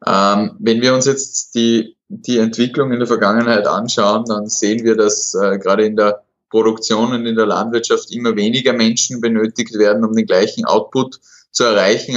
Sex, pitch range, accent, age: male, 105-115 Hz, Swiss, 20-39